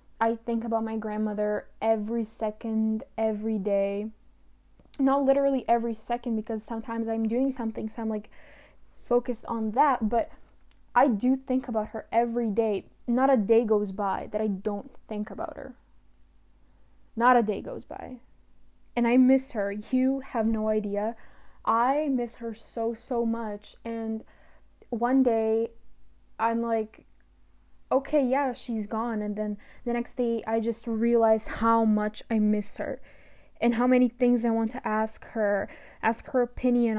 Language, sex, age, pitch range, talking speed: English, female, 10-29, 215-245 Hz, 155 wpm